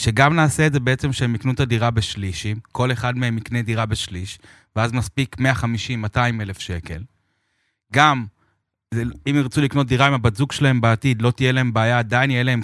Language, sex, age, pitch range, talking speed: Hebrew, male, 30-49, 110-140 Hz, 180 wpm